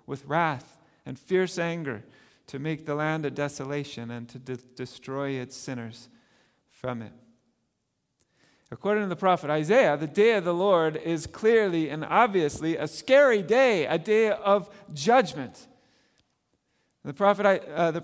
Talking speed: 135 wpm